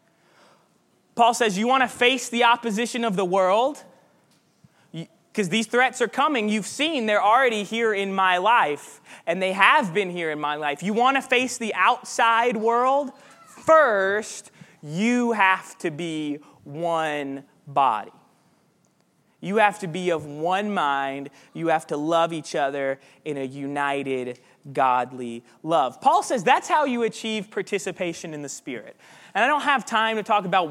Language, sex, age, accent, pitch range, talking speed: English, male, 20-39, American, 155-225 Hz, 160 wpm